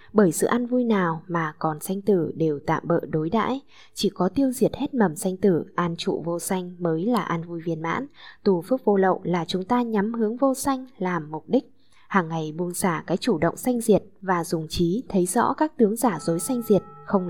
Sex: female